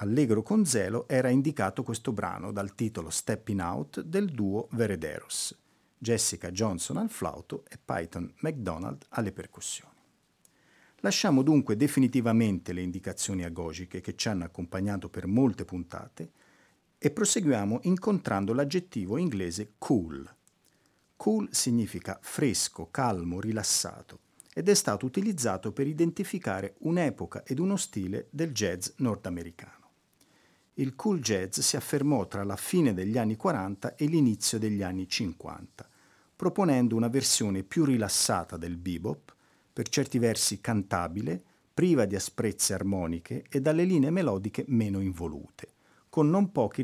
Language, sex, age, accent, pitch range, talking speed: Italian, male, 50-69, native, 95-145 Hz, 130 wpm